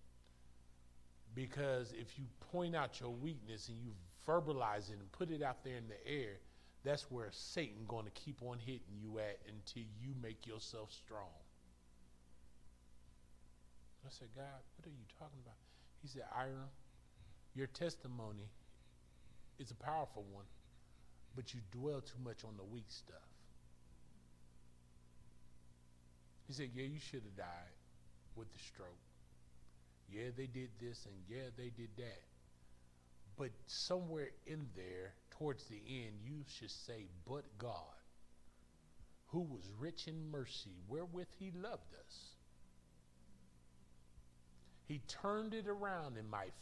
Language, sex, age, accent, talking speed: English, male, 30-49, American, 140 wpm